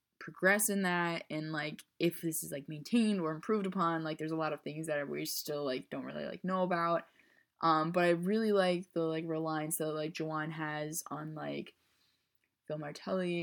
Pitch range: 150-175 Hz